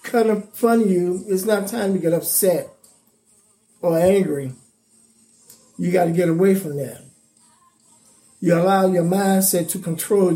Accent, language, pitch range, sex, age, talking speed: American, English, 170-205 Hz, male, 50-69, 150 wpm